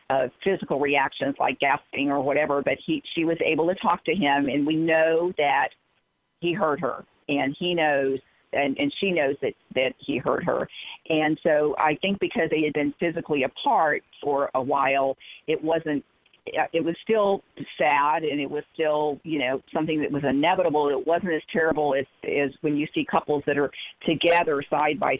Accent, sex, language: American, female, English